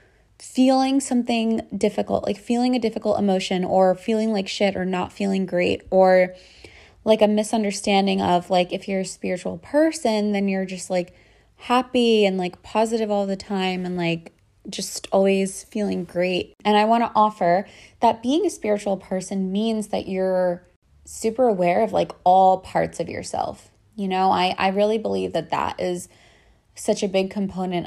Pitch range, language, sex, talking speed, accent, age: 185-215 Hz, English, female, 170 wpm, American, 20-39